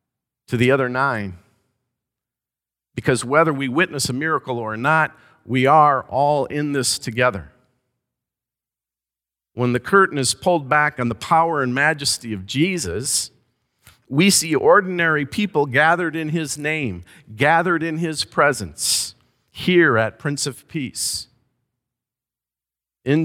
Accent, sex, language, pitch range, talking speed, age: American, male, English, 105-140 Hz, 125 wpm, 50-69